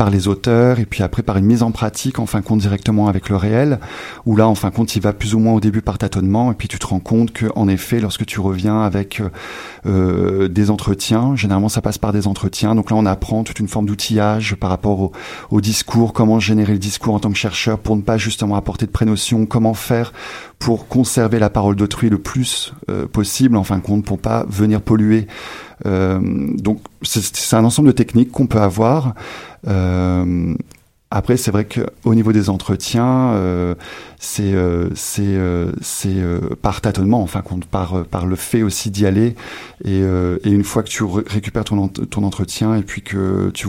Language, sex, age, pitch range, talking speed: French, male, 40-59, 95-110 Hz, 215 wpm